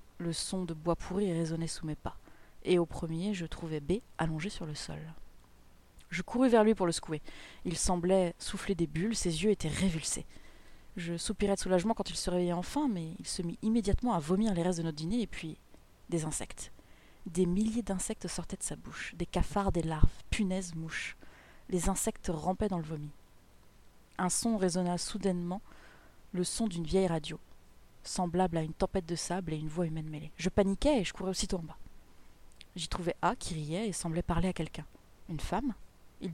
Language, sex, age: French, female, 30-49